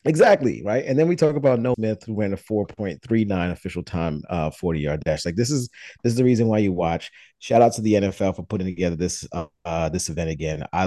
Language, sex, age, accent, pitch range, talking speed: English, male, 30-49, American, 80-105 Hz, 245 wpm